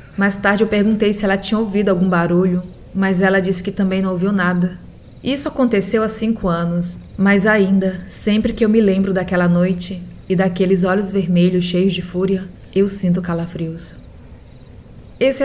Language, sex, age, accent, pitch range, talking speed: Portuguese, female, 20-39, Brazilian, 175-205 Hz, 165 wpm